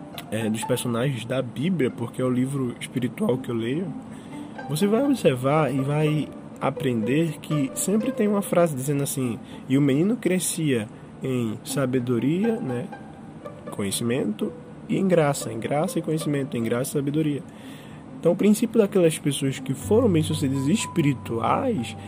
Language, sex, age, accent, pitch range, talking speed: Portuguese, male, 20-39, Brazilian, 120-155 Hz, 150 wpm